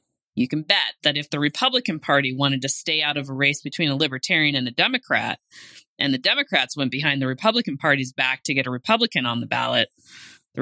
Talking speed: 215 wpm